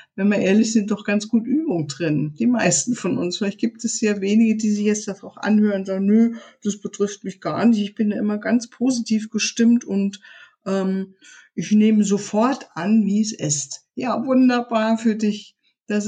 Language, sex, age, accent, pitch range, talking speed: German, female, 50-69, German, 185-225 Hz, 195 wpm